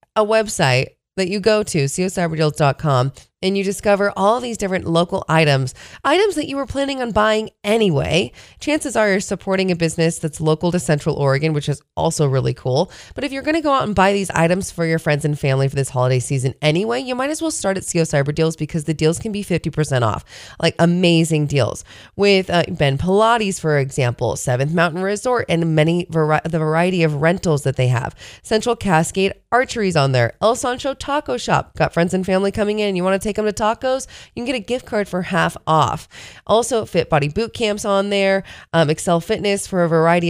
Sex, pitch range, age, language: female, 155-205 Hz, 20-39, English